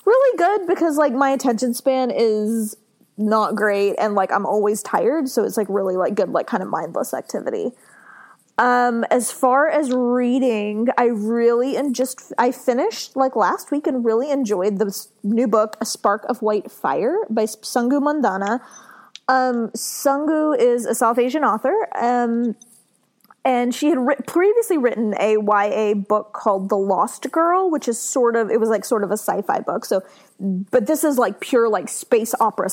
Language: English